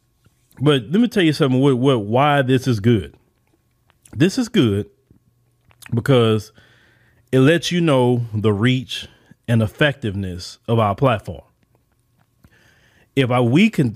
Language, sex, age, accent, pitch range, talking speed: English, male, 30-49, American, 115-155 Hz, 135 wpm